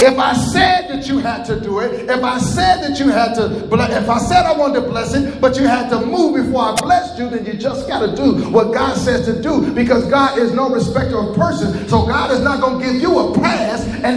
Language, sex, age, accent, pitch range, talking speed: English, male, 40-59, American, 205-265 Hz, 265 wpm